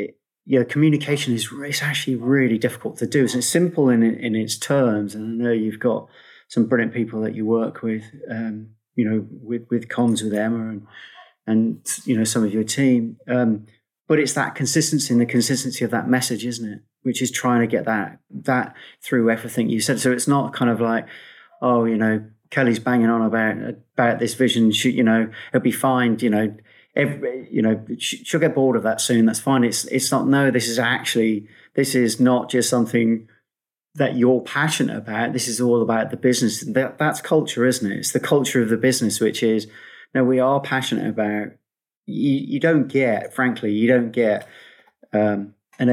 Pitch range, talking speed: 110-130 Hz, 195 wpm